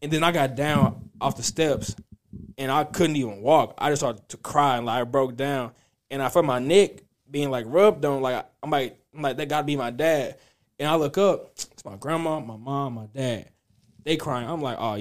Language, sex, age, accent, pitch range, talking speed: English, male, 20-39, American, 115-155 Hz, 240 wpm